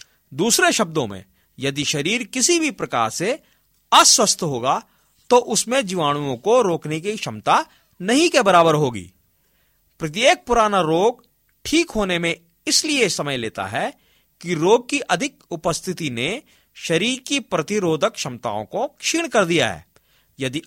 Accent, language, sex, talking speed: native, Hindi, male, 140 wpm